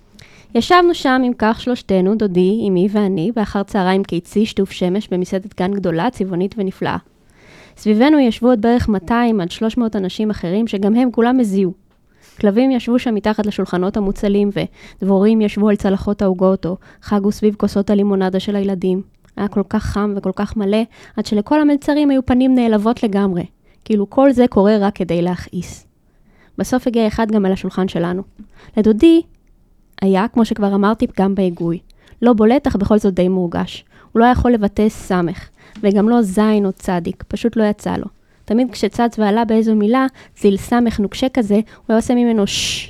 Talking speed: 160 wpm